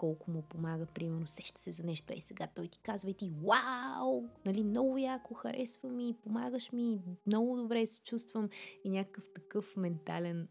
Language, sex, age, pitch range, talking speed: Bulgarian, female, 20-39, 165-215 Hz, 175 wpm